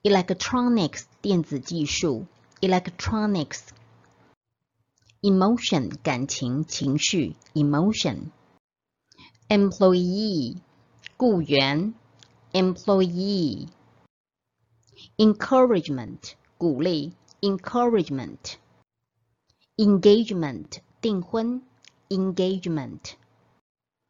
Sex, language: female, Chinese